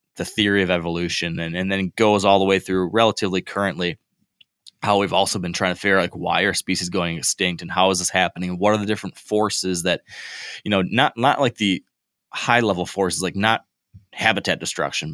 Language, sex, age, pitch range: English, male, 20-39, 90-110 Hz